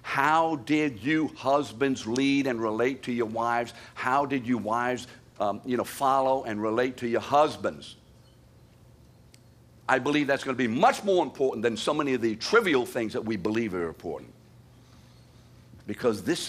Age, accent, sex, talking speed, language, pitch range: 60-79, American, male, 160 wpm, English, 105-125 Hz